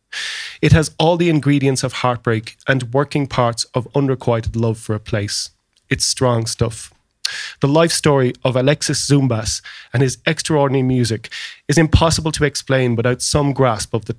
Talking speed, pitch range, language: 160 wpm, 115-140 Hz, English